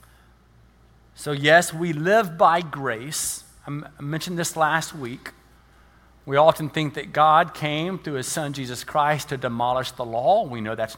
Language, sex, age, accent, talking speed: English, male, 50-69, American, 160 wpm